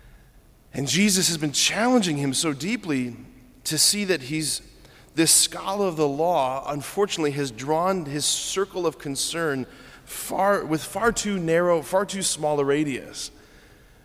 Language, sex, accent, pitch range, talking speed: English, male, American, 140-180 Hz, 145 wpm